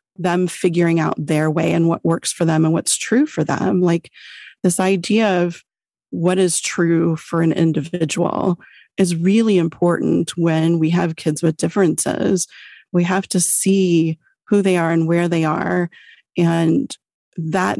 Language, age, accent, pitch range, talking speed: English, 30-49, American, 165-195 Hz, 160 wpm